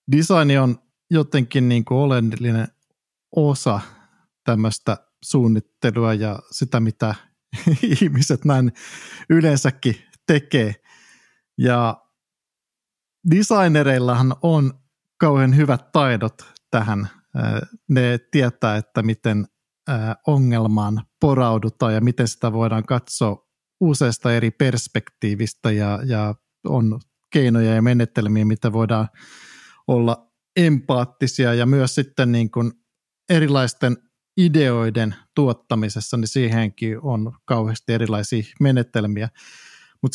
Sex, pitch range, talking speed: male, 115-140 Hz, 90 wpm